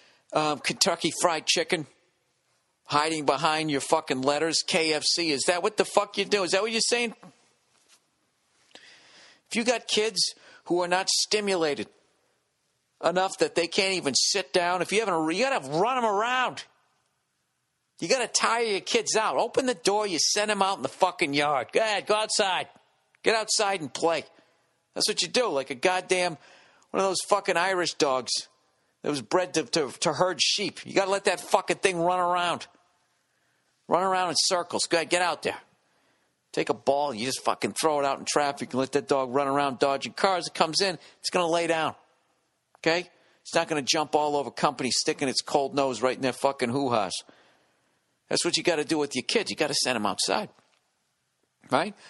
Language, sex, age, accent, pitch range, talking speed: English, male, 50-69, American, 145-190 Hz, 200 wpm